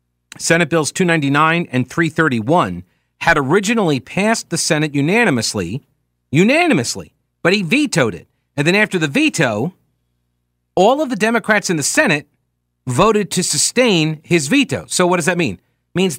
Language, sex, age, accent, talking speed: English, male, 40-59, American, 150 wpm